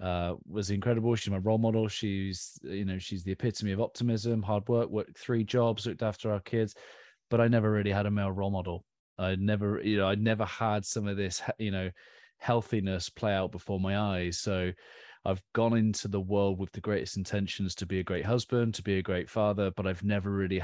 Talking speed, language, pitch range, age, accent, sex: 220 wpm, English, 95-110 Hz, 30-49, British, male